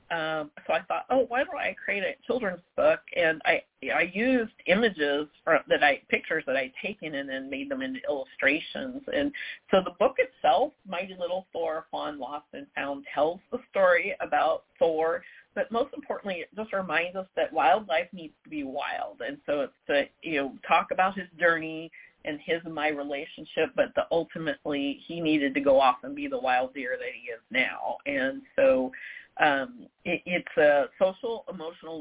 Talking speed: 185 wpm